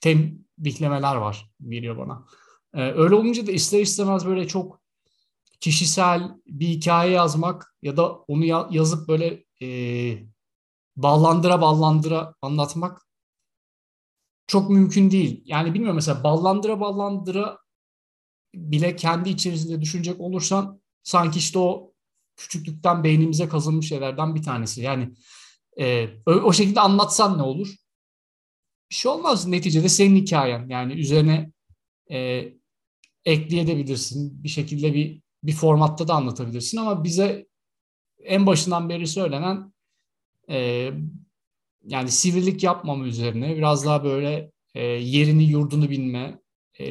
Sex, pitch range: male, 135-180 Hz